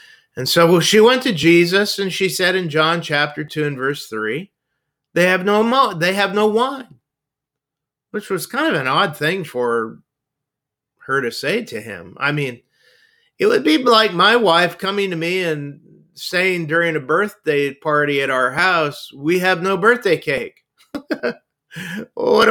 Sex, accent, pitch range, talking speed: male, American, 150-210 Hz, 170 wpm